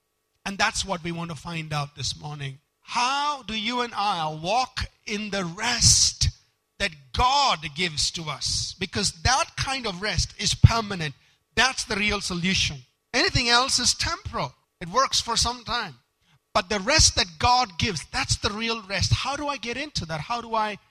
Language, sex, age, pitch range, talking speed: English, male, 50-69, 170-235 Hz, 180 wpm